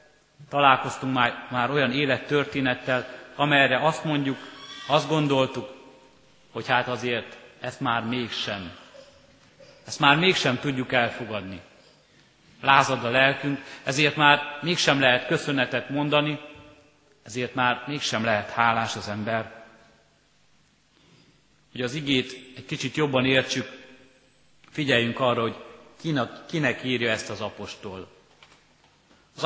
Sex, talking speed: male, 110 wpm